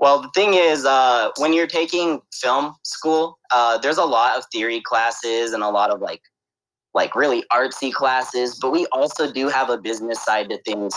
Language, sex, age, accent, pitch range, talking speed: English, male, 20-39, American, 130-170 Hz, 195 wpm